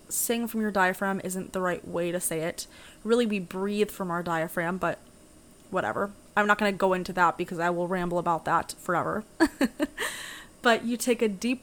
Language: English